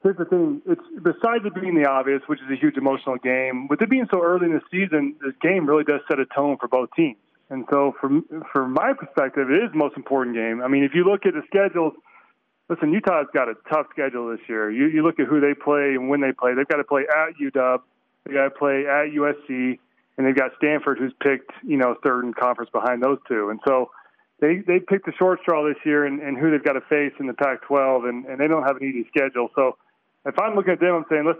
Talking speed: 260 wpm